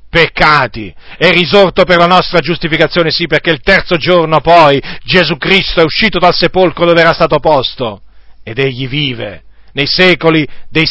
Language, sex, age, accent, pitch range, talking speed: Italian, male, 50-69, native, 125-190 Hz, 160 wpm